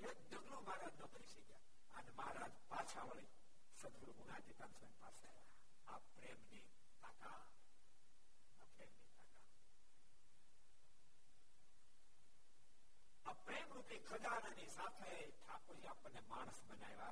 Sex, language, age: male, Gujarati, 60-79